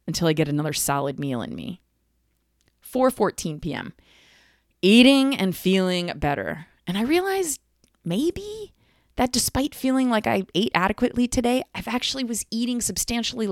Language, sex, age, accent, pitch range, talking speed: English, female, 20-39, American, 155-245 Hz, 140 wpm